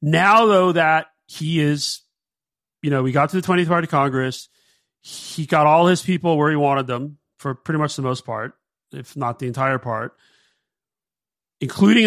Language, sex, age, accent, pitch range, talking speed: English, male, 40-59, American, 145-185 Hz, 175 wpm